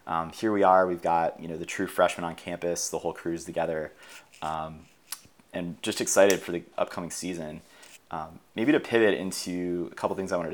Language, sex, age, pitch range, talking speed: English, male, 30-49, 80-95 Hz, 200 wpm